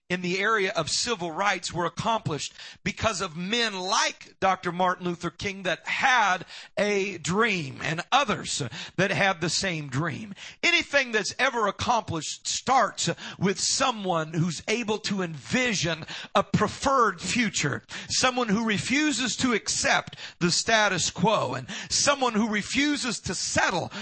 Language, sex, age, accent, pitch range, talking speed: English, male, 50-69, American, 180-245 Hz, 135 wpm